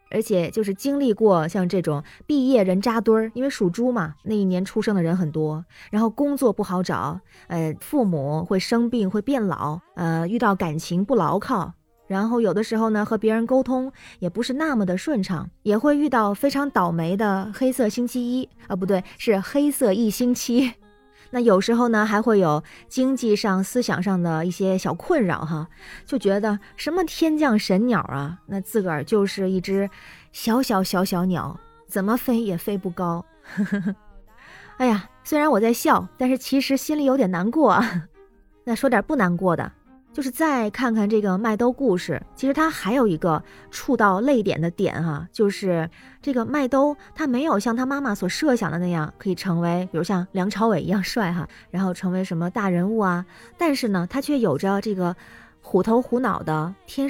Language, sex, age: Chinese, female, 20-39